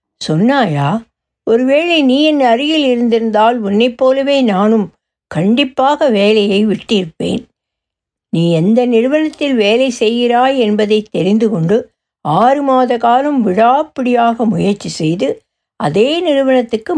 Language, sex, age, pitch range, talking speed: Tamil, female, 60-79, 200-265 Hz, 100 wpm